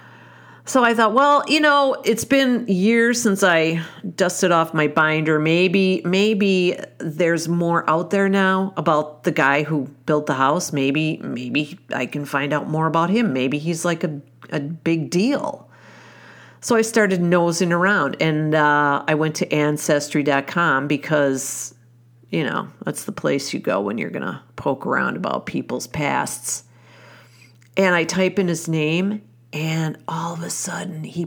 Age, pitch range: 50-69, 140-185 Hz